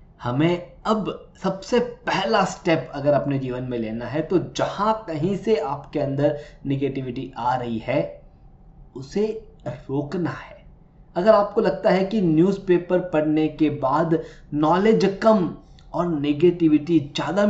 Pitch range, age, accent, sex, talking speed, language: 135-170 Hz, 20-39, native, male, 130 wpm, Hindi